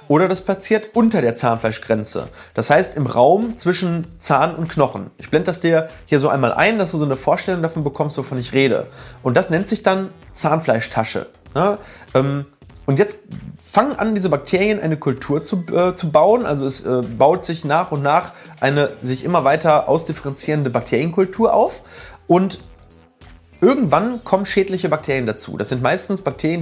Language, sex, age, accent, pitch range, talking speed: German, male, 30-49, German, 135-195 Hz, 170 wpm